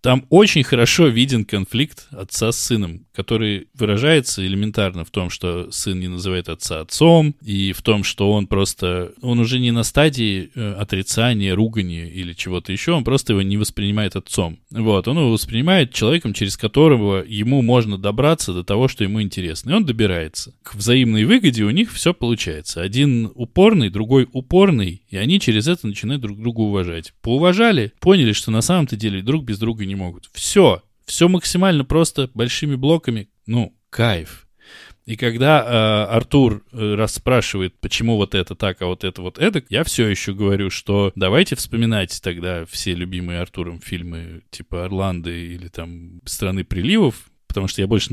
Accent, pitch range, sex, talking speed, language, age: native, 95-125 Hz, male, 165 wpm, Russian, 20-39